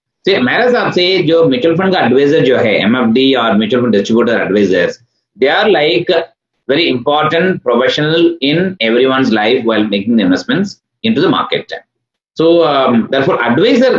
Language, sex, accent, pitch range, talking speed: Hindi, male, native, 125-180 Hz, 130 wpm